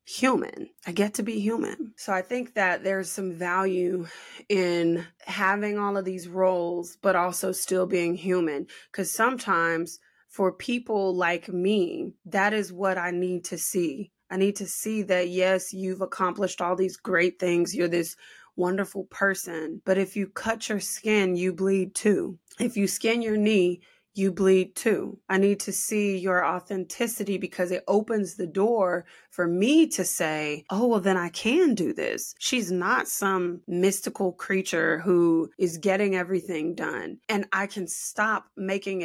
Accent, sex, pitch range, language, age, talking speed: American, female, 180-205 Hz, English, 20-39, 165 wpm